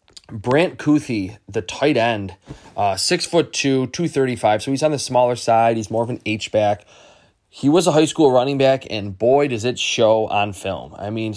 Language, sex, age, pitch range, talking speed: English, male, 20-39, 105-125 Hz, 210 wpm